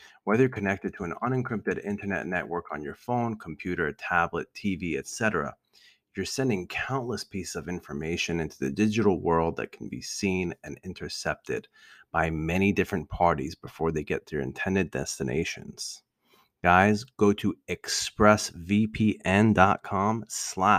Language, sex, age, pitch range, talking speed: English, male, 30-49, 95-115 Hz, 135 wpm